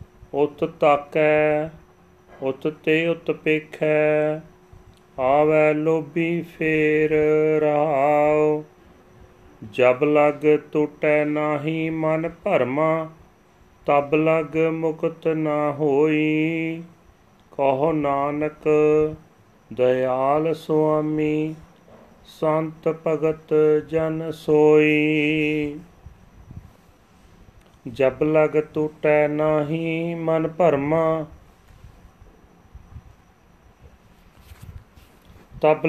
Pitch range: 125-155 Hz